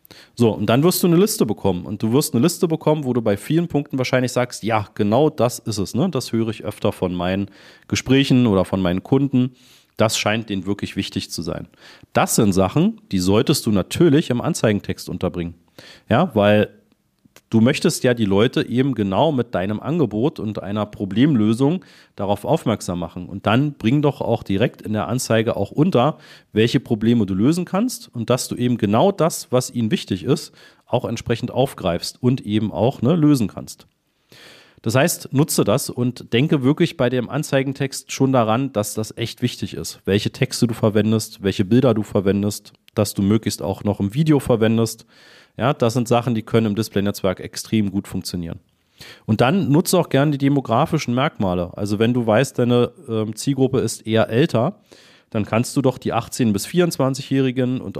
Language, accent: German, German